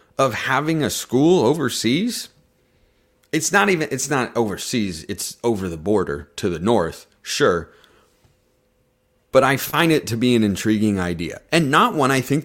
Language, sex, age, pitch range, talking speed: English, male, 30-49, 100-155 Hz, 160 wpm